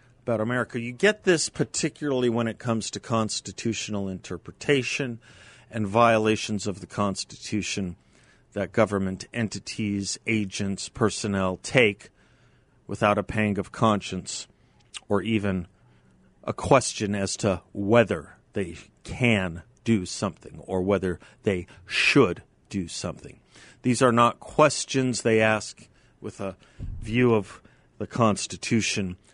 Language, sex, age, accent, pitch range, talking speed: English, male, 40-59, American, 100-125 Hz, 115 wpm